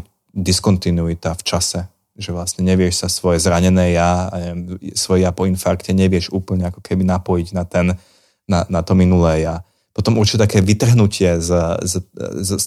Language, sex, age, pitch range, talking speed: Slovak, male, 30-49, 90-100 Hz, 155 wpm